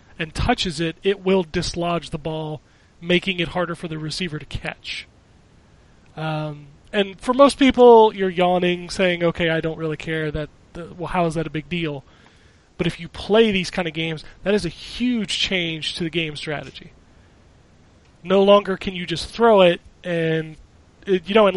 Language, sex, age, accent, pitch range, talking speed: English, male, 30-49, American, 160-190 Hz, 185 wpm